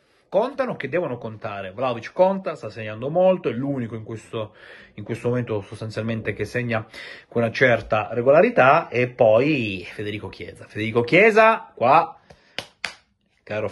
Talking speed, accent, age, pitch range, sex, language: 140 wpm, native, 30-49, 110-140 Hz, male, Italian